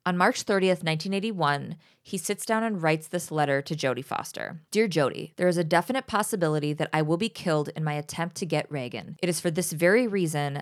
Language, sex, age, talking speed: English, female, 20-39, 215 wpm